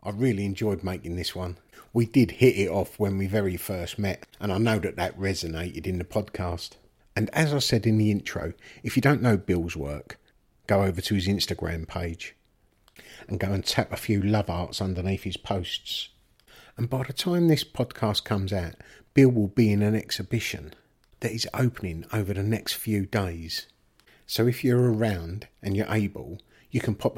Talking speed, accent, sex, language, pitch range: 190 wpm, British, male, English, 95-115 Hz